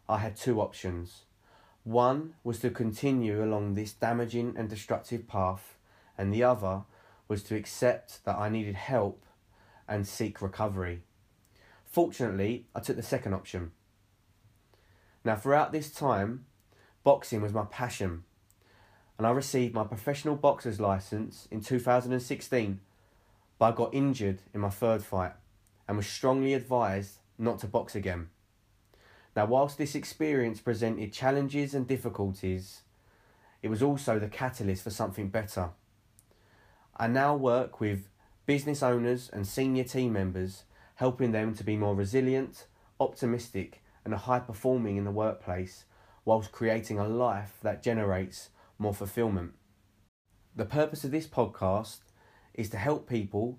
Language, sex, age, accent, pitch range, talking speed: English, male, 20-39, British, 100-125 Hz, 135 wpm